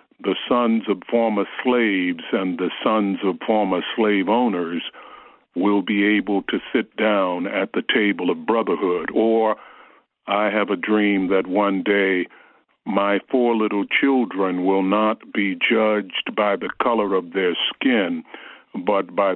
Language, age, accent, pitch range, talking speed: English, 50-69, American, 100-120 Hz, 145 wpm